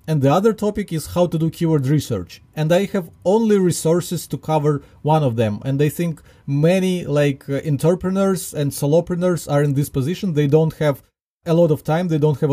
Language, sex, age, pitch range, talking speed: English, male, 30-49, 145-180 Hz, 200 wpm